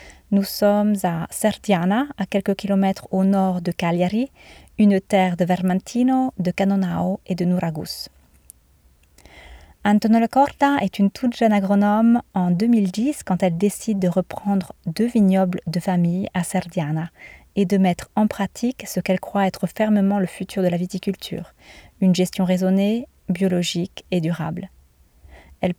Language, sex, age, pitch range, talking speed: French, female, 30-49, 185-215 Hz, 145 wpm